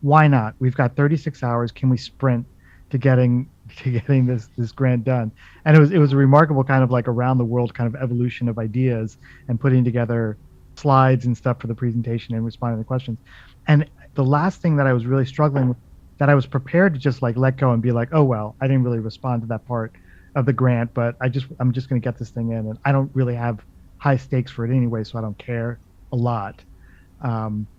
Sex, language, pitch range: male, English, 115-135 Hz